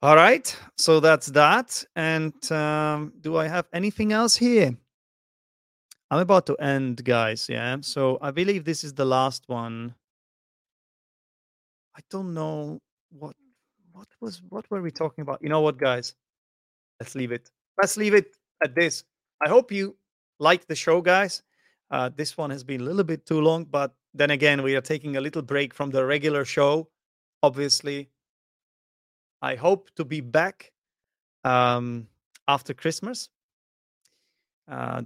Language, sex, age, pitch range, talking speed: English, male, 30-49, 135-185 Hz, 155 wpm